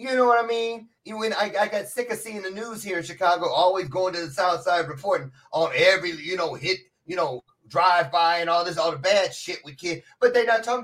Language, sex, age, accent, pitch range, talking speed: English, male, 30-49, American, 160-210 Hz, 255 wpm